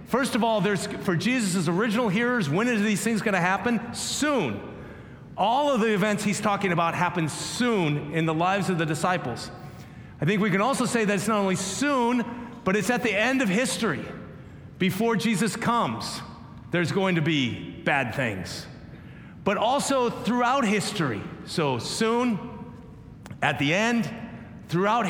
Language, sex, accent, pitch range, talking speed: English, male, American, 160-220 Hz, 160 wpm